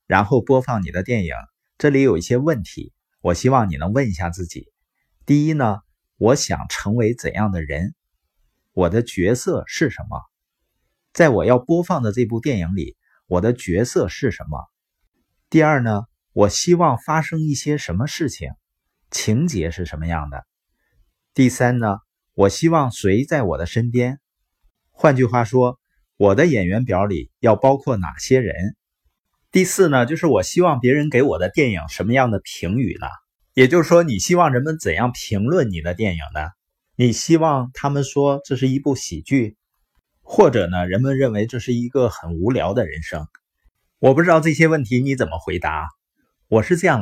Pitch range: 95-140 Hz